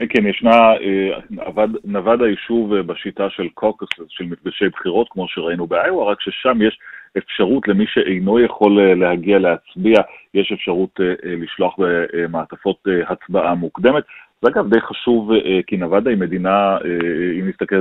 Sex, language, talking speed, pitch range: male, Hebrew, 120 wpm, 90-105 Hz